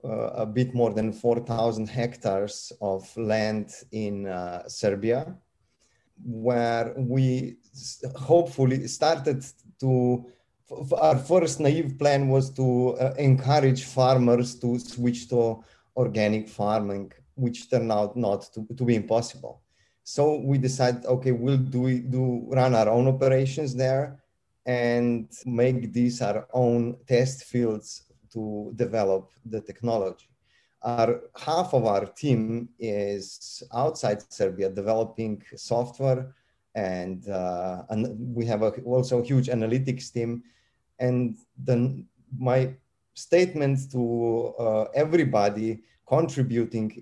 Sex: male